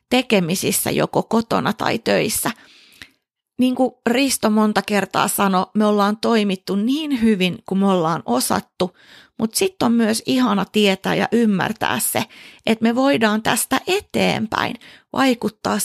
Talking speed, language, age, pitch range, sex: 135 wpm, Finnish, 30-49, 190-235 Hz, female